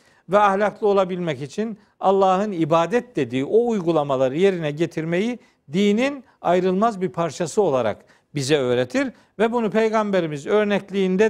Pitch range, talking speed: 170-220 Hz, 115 wpm